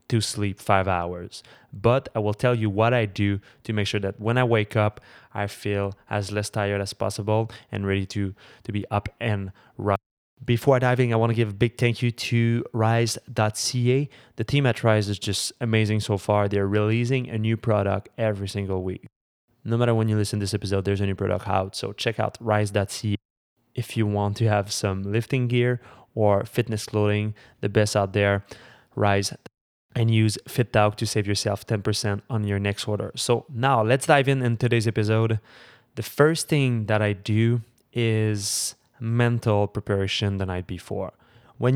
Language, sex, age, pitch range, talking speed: English, male, 20-39, 100-120 Hz, 185 wpm